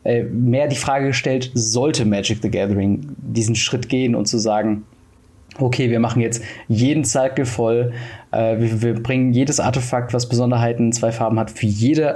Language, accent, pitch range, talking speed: German, German, 115-135 Hz, 170 wpm